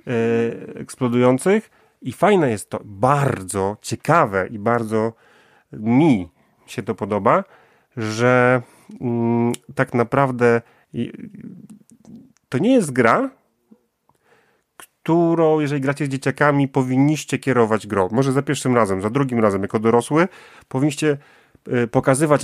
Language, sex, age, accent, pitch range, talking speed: Polish, male, 30-49, native, 110-145 Hz, 105 wpm